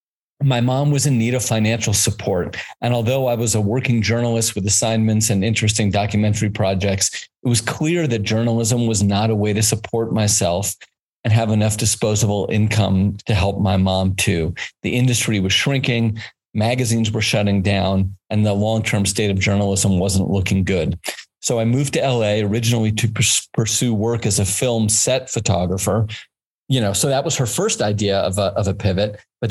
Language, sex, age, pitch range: English, male, 40-59, 100-120 Hz